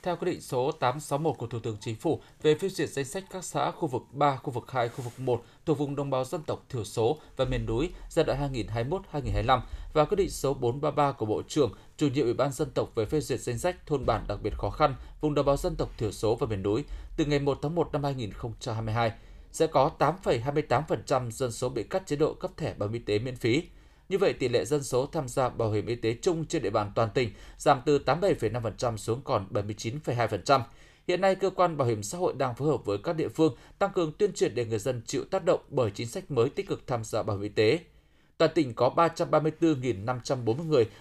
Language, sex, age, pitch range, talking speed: Vietnamese, male, 20-39, 120-155 Hz, 240 wpm